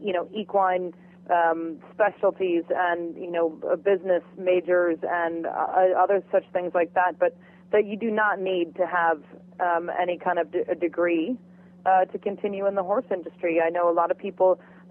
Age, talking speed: 30-49, 185 wpm